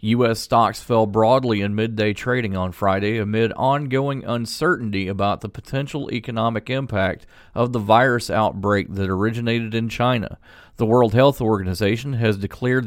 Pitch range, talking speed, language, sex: 105-125 Hz, 145 wpm, English, male